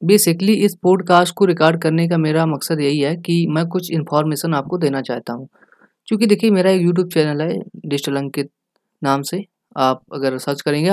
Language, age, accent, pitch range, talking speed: Hindi, 20-39, native, 145-185 Hz, 180 wpm